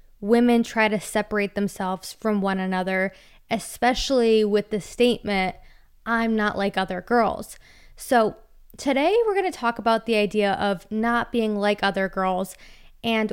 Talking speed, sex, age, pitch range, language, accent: 150 wpm, female, 20-39, 195-235 Hz, English, American